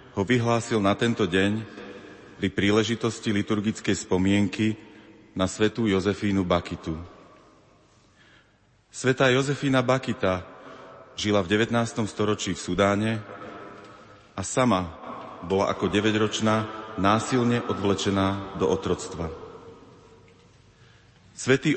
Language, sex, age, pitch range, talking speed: Slovak, male, 40-59, 100-115 Hz, 90 wpm